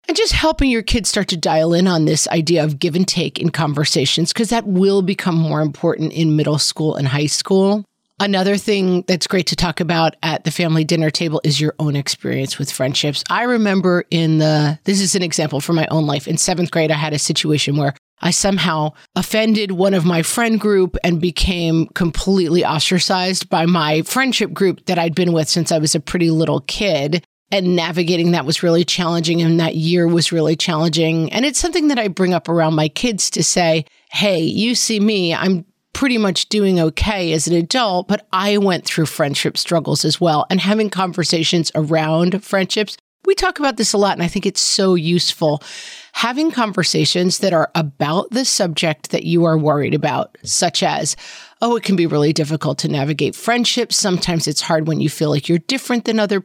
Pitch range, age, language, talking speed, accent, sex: 160-195 Hz, 30-49, English, 200 wpm, American, female